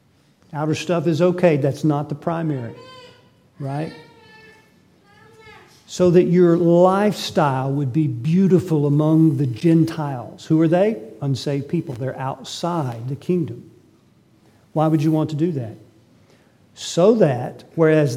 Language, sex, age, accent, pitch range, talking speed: English, male, 50-69, American, 150-195 Hz, 125 wpm